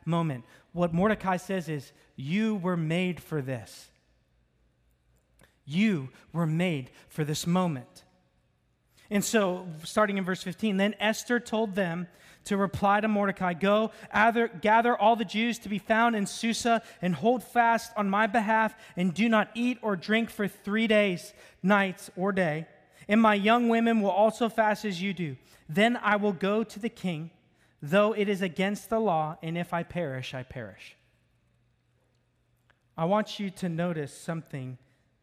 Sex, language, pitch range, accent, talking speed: male, English, 135-205 Hz, American, 160 wpm